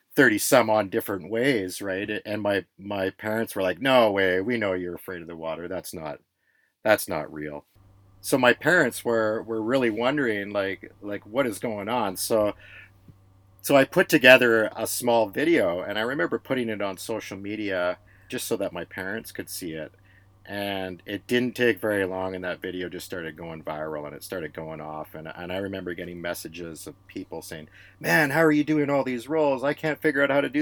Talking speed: 205 wpm